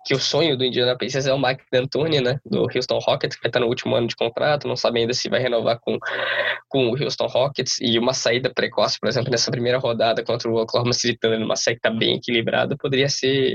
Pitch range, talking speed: 120-135 Hz, 230 wpm